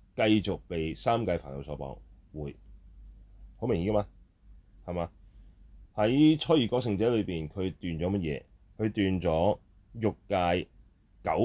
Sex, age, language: male, 30-49, Chinese